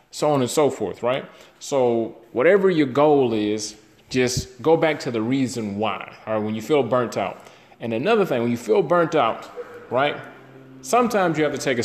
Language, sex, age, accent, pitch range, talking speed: English, male, 30-49, American, 120-145 Hz, 205 wpm